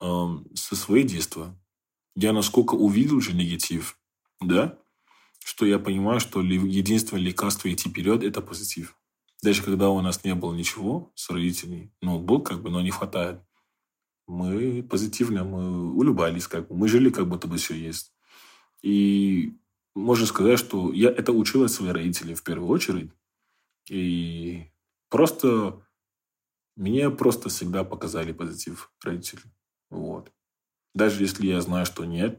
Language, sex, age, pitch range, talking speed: Russian, male, 20-39, 85-105 Hz, 145 wpm